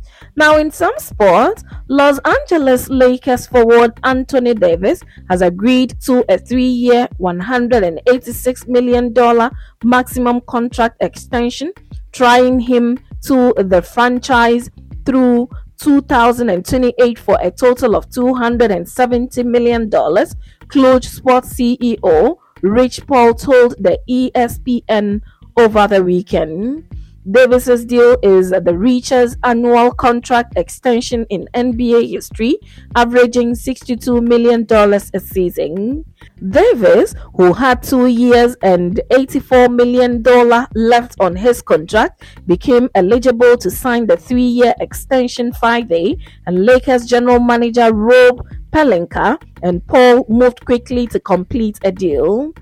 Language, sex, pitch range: English, female, 230-250 Hz